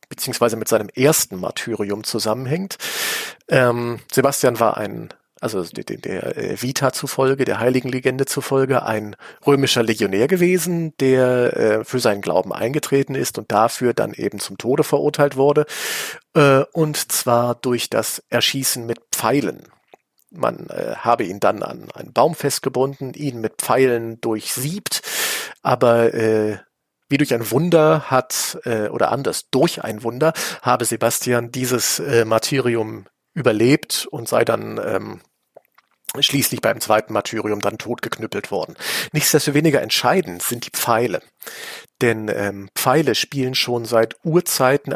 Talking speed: 135 wpm